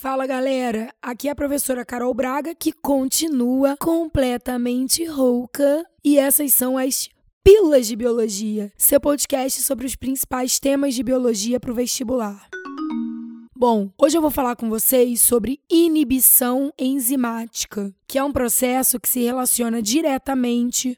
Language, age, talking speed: Portuguese, 10-29, 135 wpm